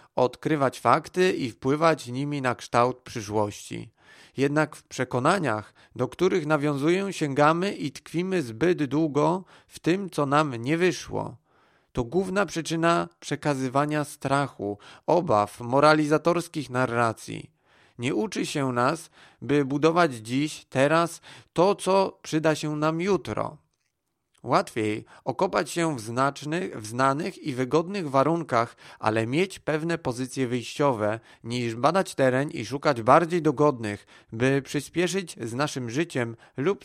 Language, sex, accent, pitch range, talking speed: Polish, male, native, 125-165 Hz, 120 wpm